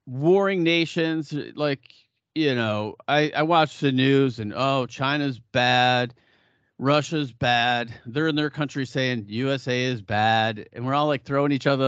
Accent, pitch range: American, 120-160 Hz